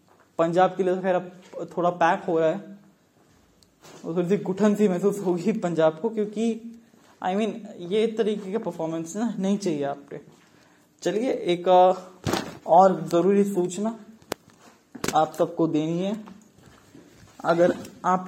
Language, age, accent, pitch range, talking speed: Hindi, 20-39, native, 165-200 Hz, 135 wpm